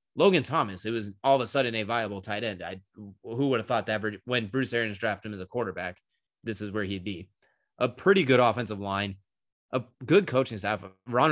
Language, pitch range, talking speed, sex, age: English, 105-130 Hz, 215 wpm, male, 20-39